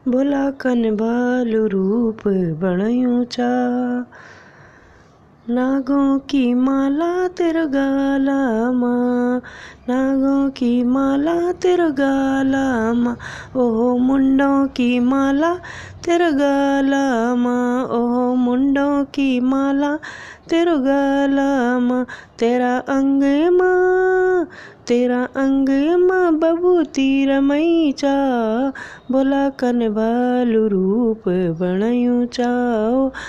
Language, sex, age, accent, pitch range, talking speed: Hindi, female, 20-39, native, 245-280 Hz, 70 wpm